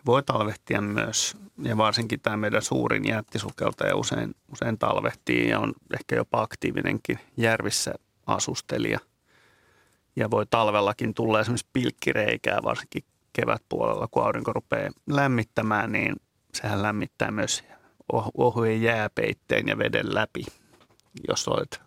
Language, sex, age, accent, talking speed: Finnish, male, 30-49, native, 120 wpm